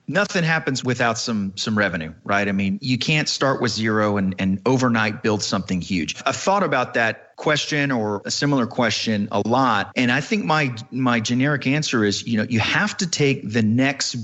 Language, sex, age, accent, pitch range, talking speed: English, male, 40-59, American, 110-140 Hz, 200 wpm